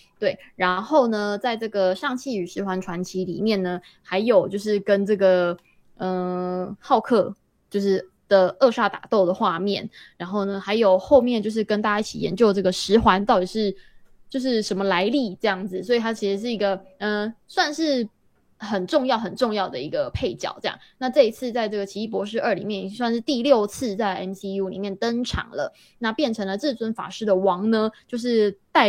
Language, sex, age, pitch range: Chinese, female, 20-39, 190-230 Hz